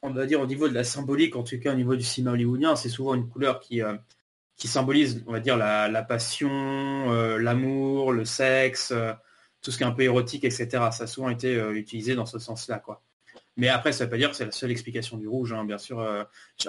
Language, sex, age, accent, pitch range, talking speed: French, male, 20-39, French, 115-140 Hz, 255 wpm